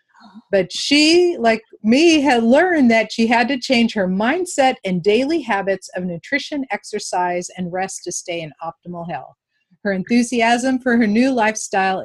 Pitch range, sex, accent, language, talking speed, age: 180-235 Hz, female, American, English, 160 wpm, 50-69